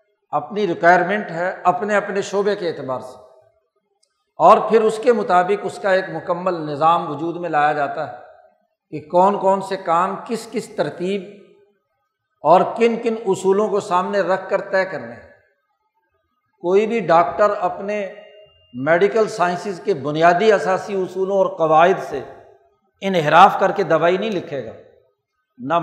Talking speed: 145 wpm